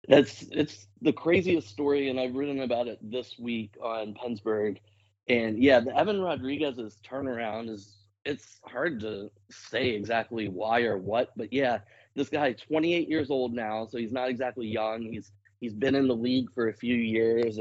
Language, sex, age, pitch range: English, male, 30-49, 110-135 Hz